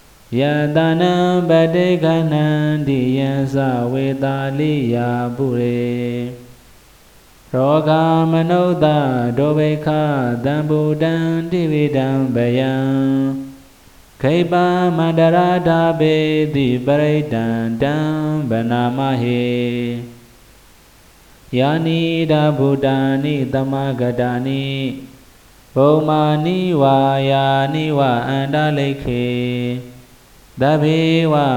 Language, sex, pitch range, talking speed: Vietnamese, male, 125-155 Hz, 60 wpm